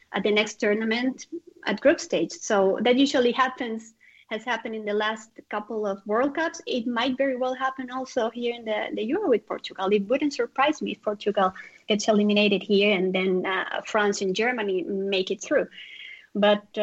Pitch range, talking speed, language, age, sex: 195-245 Hz, 185 wpm, English, 20-39, female